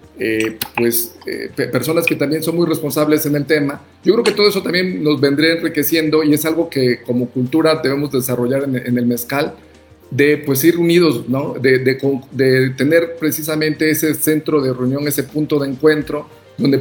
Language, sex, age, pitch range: Spanish, male, 50-69, 130-160 Hz